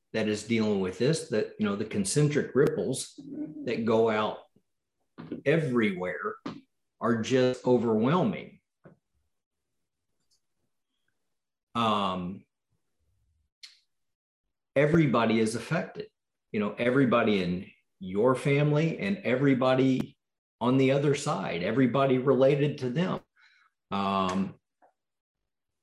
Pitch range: 110-140 Hz